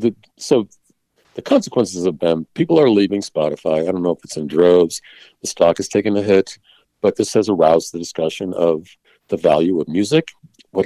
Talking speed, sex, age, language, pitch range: 190 wpm, male, 50-69, English, 85-105 Hz